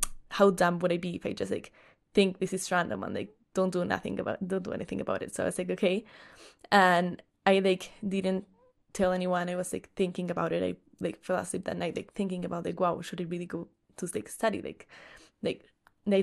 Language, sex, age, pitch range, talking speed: English, female, 10-29, 180-195 Hz, 225 wpm